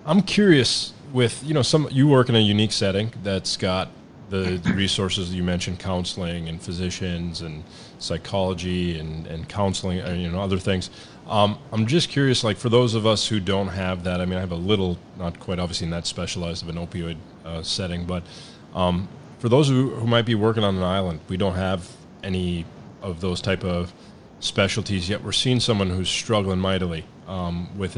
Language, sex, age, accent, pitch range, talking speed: English, male, 30-49, American, 90-105 Hz, 200 wpm